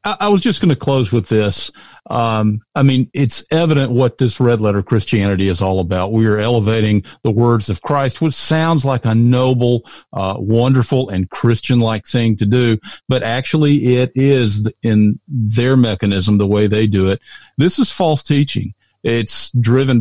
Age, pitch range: 50-69, 105-135 Hz